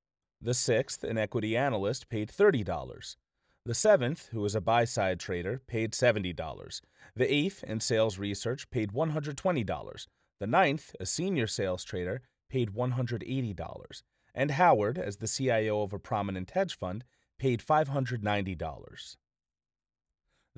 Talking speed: 125 wpm